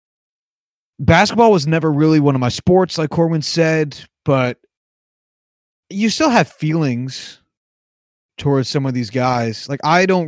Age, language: 30-49, English